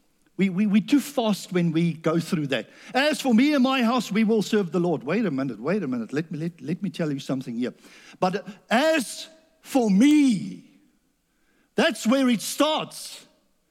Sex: male